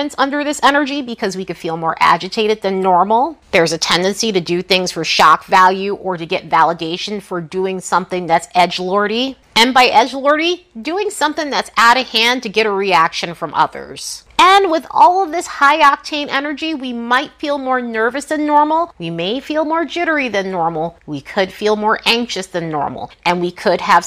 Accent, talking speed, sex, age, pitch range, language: American, 195 wpm, female, 30-49, 185-280 Hz, English